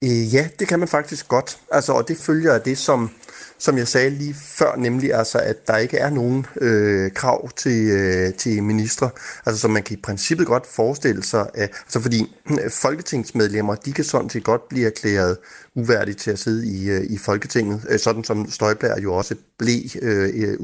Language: Danish